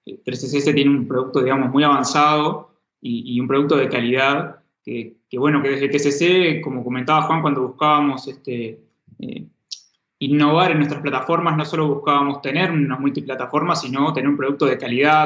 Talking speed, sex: 170 wpm, male